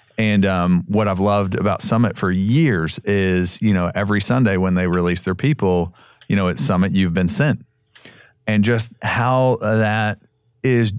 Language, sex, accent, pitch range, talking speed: English, male, American, 90-105 Hz, 170 wpm